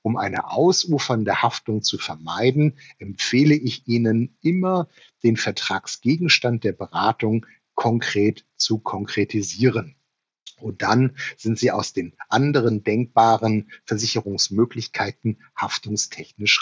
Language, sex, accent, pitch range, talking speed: German, male, German, 110-140 Hz, 95 wpm